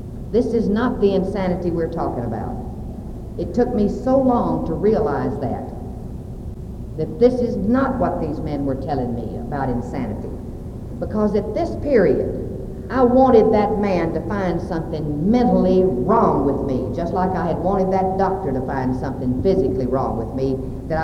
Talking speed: 165 wpm